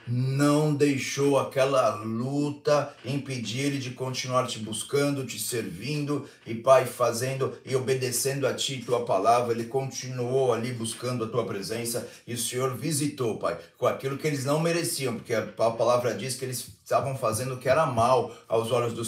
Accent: Brazilian